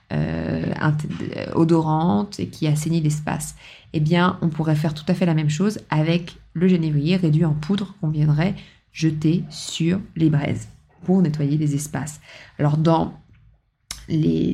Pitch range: 150-180 Hz